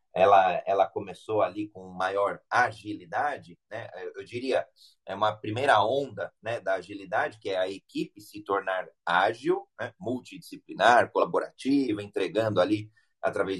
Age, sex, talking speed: 30-49, male, 135 wpm